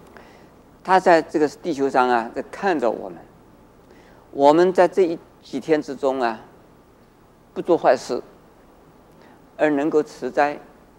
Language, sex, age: Chinese, male, 50-69